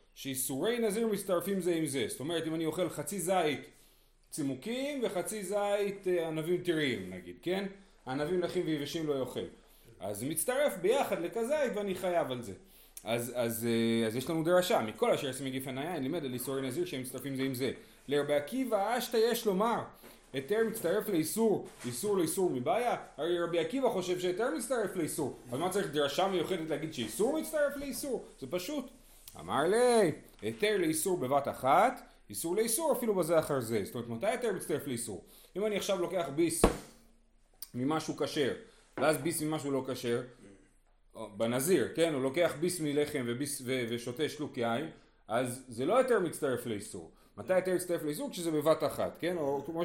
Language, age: Hebrew, 30-49